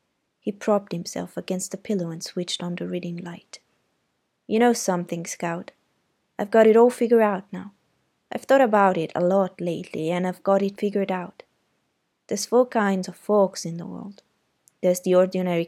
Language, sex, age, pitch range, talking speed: Italian, female, 20-39, 175-210 Hz, 180 wpm